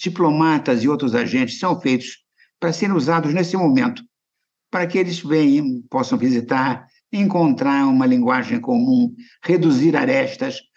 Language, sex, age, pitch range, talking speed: Portuguese, male, 60-79, 155-255 Hz, 125 wpm